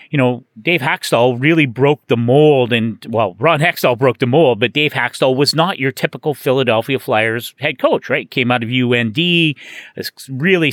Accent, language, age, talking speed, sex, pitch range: American, English, 40-59, 185 wpm, male, 130-170 Hz